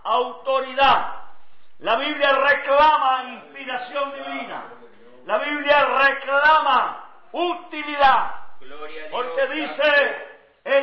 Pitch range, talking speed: 260-285 Hz, 70 wpm